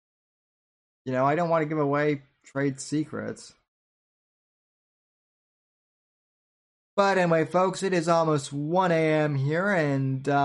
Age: 20-39